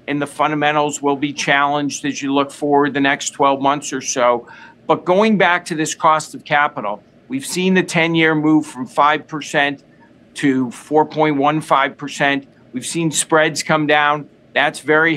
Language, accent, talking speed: English, American, 160 wpm